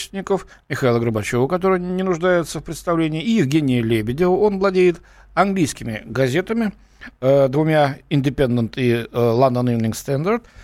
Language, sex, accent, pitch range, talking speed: Russian, male, native, 125-180 Hz, 115 wpm